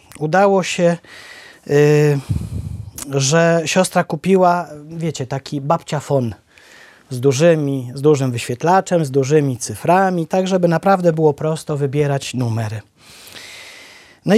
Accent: native